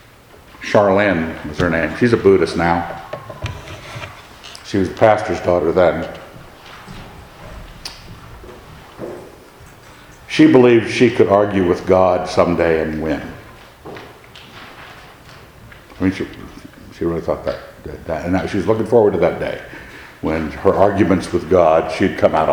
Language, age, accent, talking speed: English, 60-79, American, 130 wpm